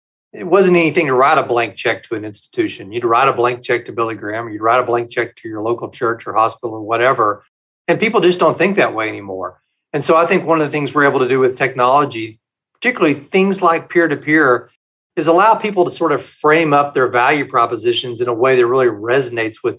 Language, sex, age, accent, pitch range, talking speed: English, male, 40-59, American, 120-165 Hz, 235 wpm